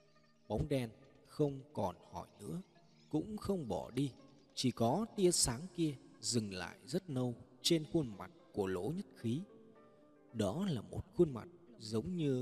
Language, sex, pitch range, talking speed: Vietnamese, male, 115-175 Hz, 160 wpm